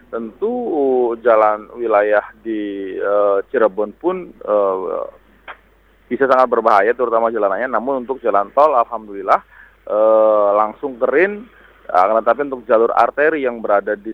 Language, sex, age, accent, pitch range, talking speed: Indonesian, male, 20-39, native, 105-140 Hz, 125 wpm